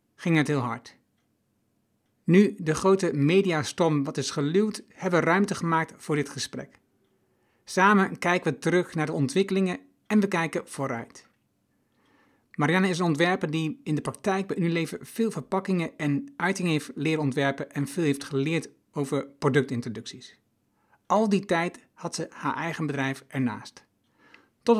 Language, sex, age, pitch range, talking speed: Dutch, male, 60-79, 140-175 Hz, 150 wpm